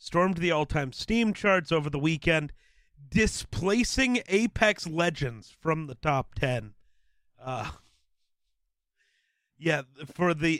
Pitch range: 125-170 Hz